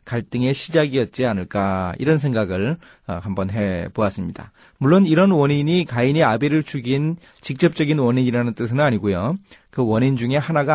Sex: male